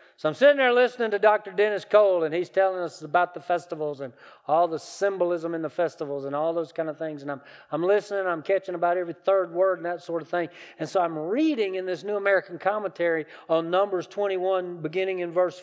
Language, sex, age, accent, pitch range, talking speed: English, male, 40-59, American, 165-205 Hz, 225 wpm